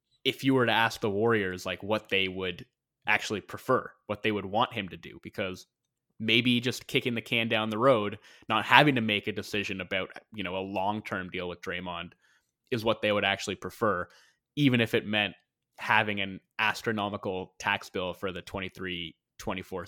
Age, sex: 20-39, male